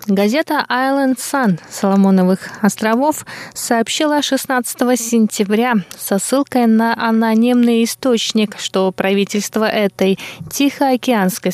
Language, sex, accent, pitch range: Russian, female, native, 200-245 Hz